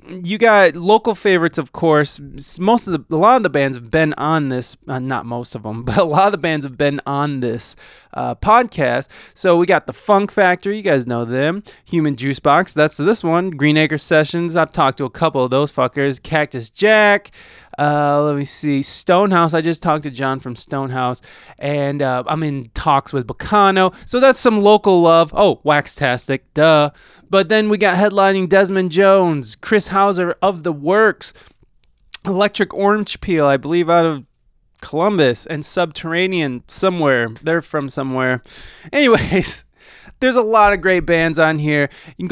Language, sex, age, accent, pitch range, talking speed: English, male, 20-39, American, 140-185 Hz, 180 wpm